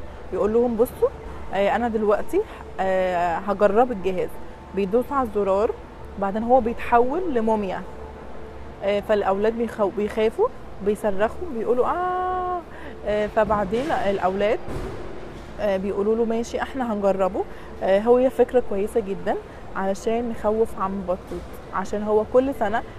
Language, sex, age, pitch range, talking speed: English, female, 20-39, 200-250 Hz, 100 wpm